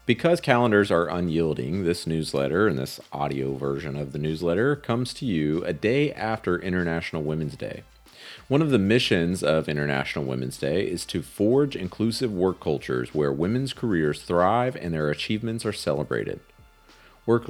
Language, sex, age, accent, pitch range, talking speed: English, male, 40-59, American, 75-110 Hz, 160 wpm